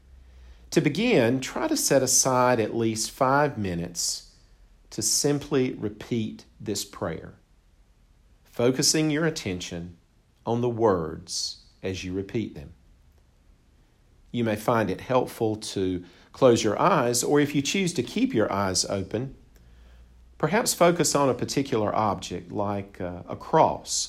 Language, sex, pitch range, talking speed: English, male, 85-115 Hz, 130 wpm